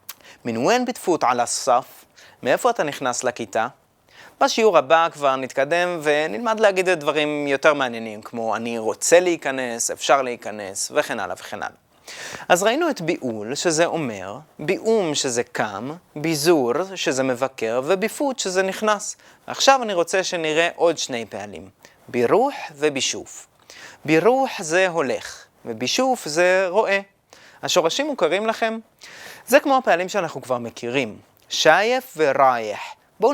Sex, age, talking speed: male, 30-49, 125 wpm